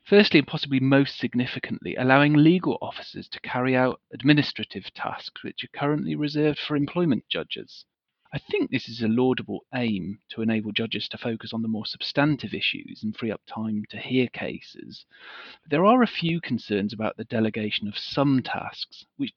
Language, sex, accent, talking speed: English, male, British, 175 wpm